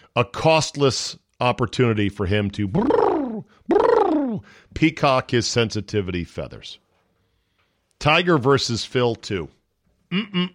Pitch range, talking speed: 100-135 Hz, 90 wpm